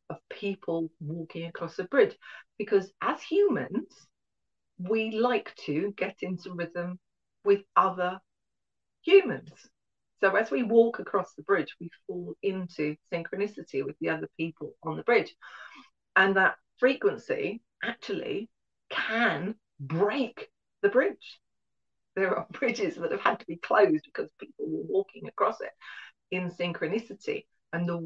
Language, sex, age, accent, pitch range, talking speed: English, female, 40-59, British, 165-240 Hz, 135 wpm